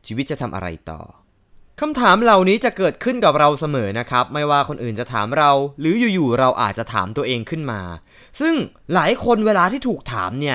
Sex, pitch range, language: male, 120-200 Hz, Thai